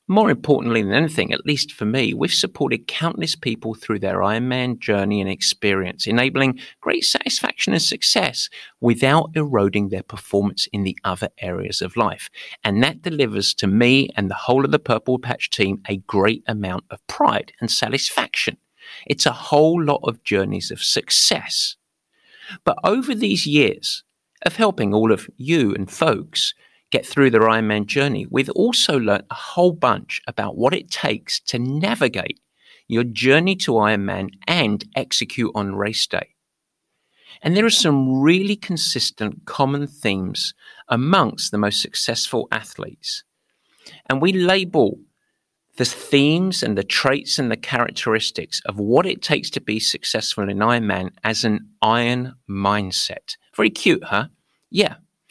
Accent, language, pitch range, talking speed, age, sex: British, English, 105-150 Hz, 150 wpm, 50-69, male